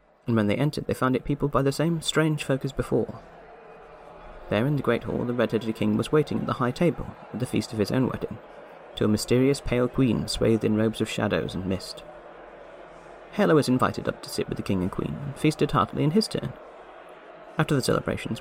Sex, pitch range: male, 110-145 Hz